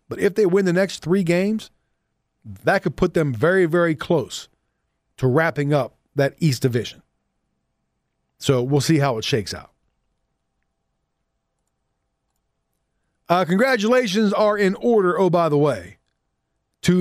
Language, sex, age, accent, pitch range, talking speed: English, male, 40-59, American, 145-190 Hz, 135 wpm